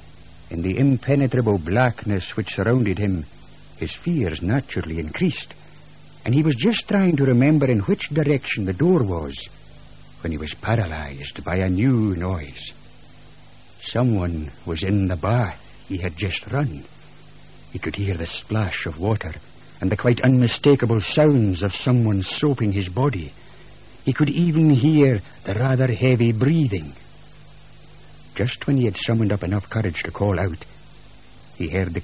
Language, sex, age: English, male, 60-79